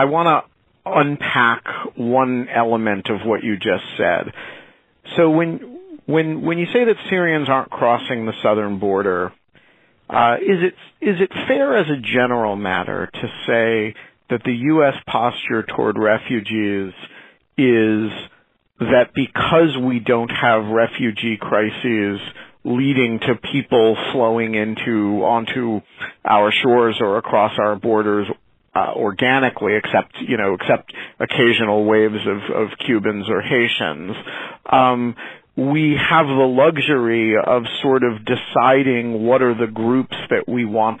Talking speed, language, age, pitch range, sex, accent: 130 wpm, English, 50-69, 110-130 Hz, male, American